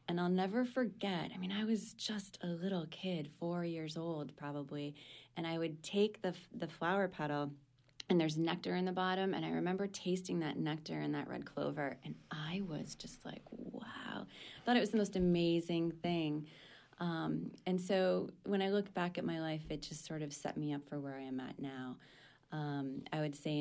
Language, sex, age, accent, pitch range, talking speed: English, female, 20-39, American, 145-175 Hz, 210 wpm